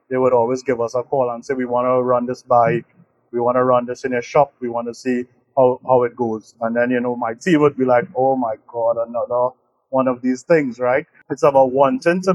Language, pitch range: English, 125-145 Hz